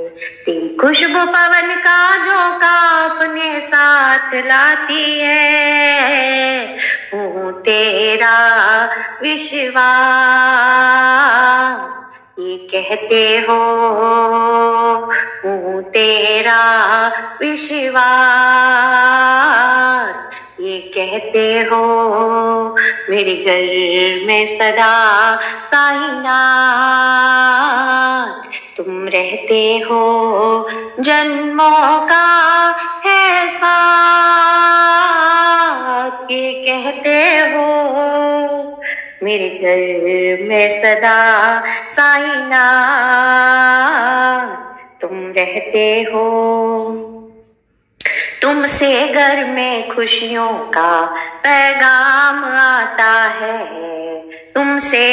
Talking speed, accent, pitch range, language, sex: 50 wpm, native, 225-290 Hz, Hindi, female